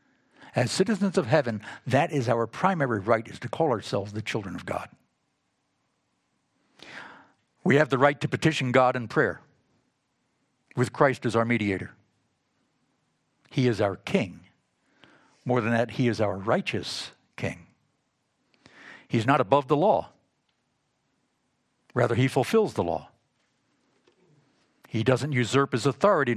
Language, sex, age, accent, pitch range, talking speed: English, male, 60-79, American, 110-145 Hz, 130 wpm